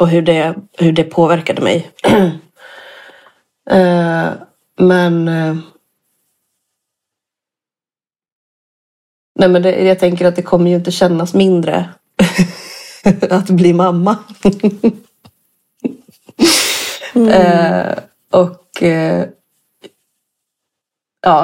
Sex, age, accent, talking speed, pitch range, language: female, 30-49, native, 80 wpm, 165-185 Hz, Swedish